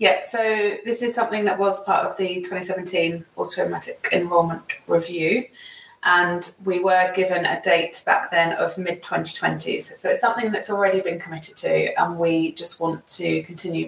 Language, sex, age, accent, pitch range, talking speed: English, female, 20-39, British, 160-185 Hz, 165 wpm